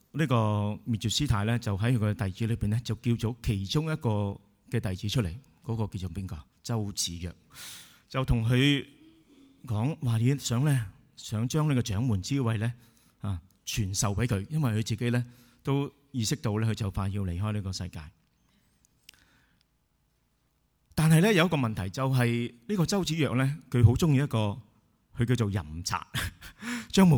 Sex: male